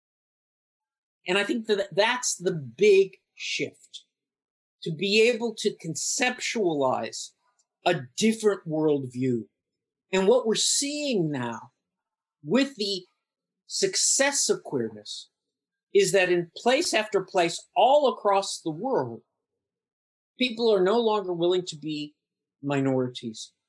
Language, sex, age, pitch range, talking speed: Vietnamese, male, 50-69, 150-215 Hz, 110 wpm